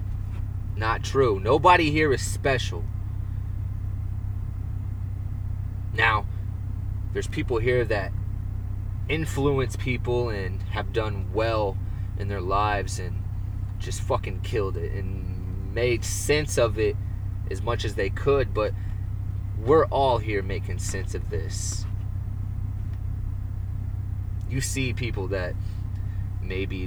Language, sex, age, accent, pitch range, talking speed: English, male, 20-39, American, 100-105 Hz, 105 wpm